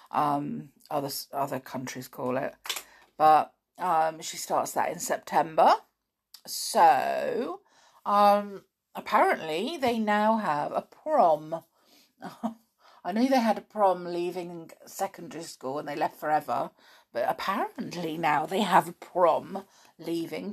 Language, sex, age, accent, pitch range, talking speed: English, female, 50-69, British, 165-225 Hz, 125 wpm